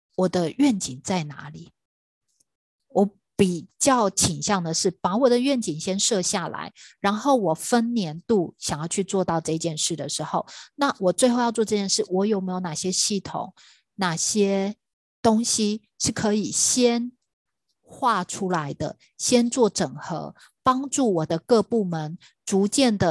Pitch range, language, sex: 170-220 Hz, Chinese, female